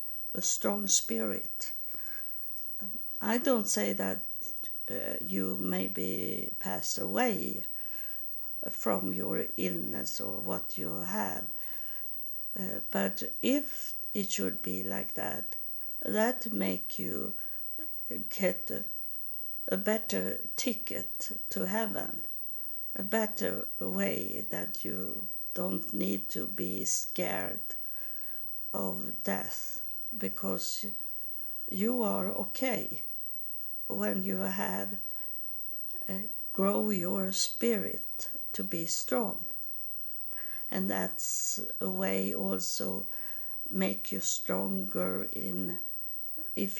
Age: 60-79